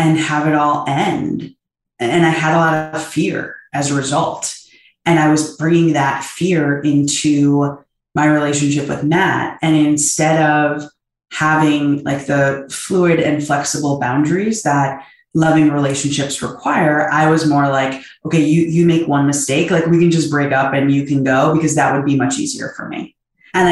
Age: 20-39